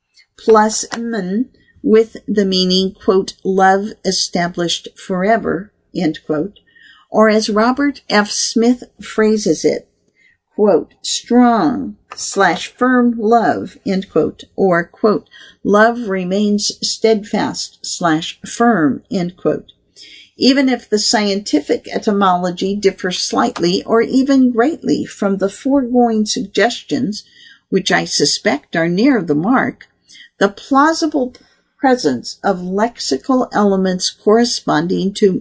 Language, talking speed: English, 100 wpm